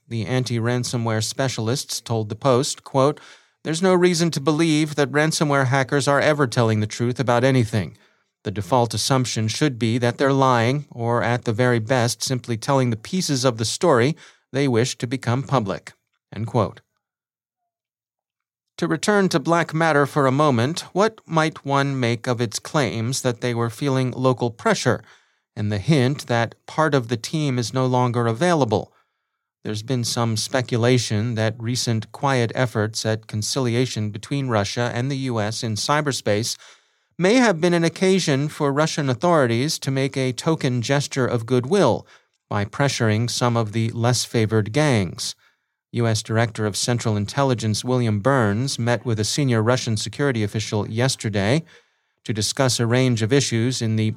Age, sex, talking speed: 30-49, male, 160 wpm